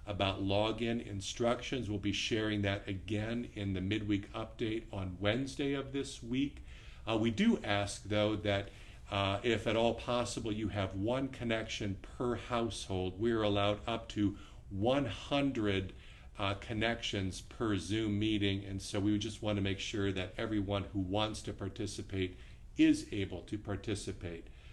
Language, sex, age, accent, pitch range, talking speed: English, male, 50-69, American, 100-120 Hz, 150 wpm